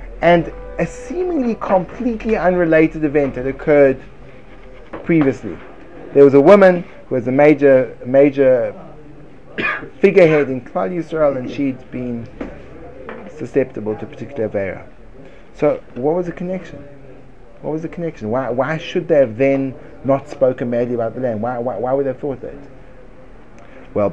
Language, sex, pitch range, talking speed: English, male, 125-160 Hz, 145 wpm